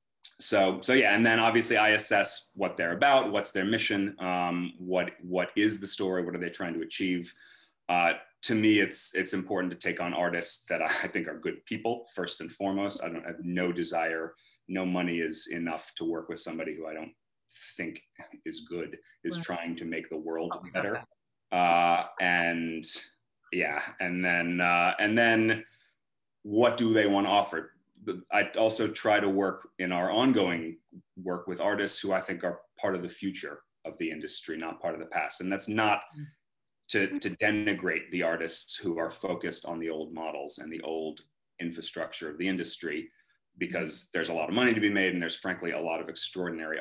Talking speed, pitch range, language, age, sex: 195 wpm, 85-105 Hz, English, 30-49, male